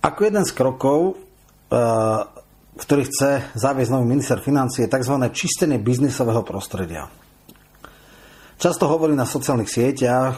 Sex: male